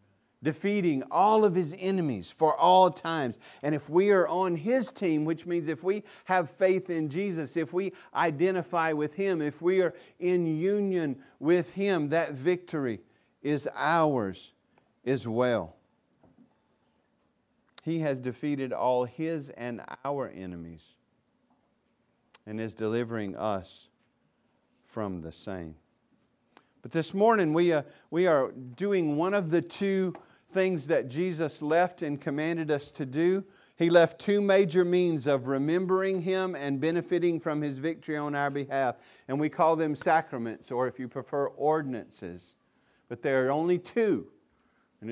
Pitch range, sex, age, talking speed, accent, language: 130-180 Hz, male, 50-69, 140 wpm, American, English